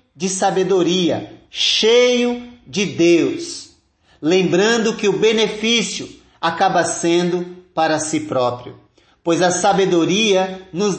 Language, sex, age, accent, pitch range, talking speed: Portuguese, male, 40-59, Brazilian, 155-210 Hz, 100 wpm